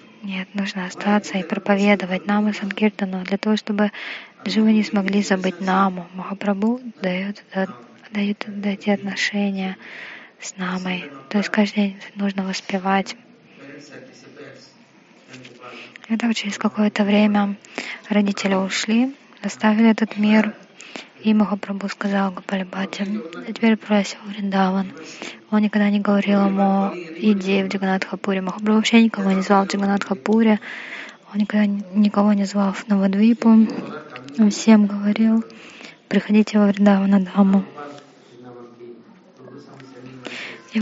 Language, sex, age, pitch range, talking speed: Russian, female, 20-39, 195-215 Hz, 115 wpm